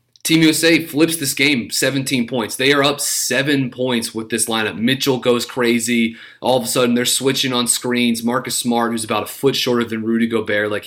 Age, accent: 30-49, American